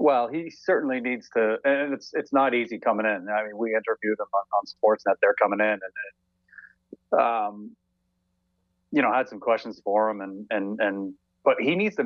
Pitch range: 95-120 Hz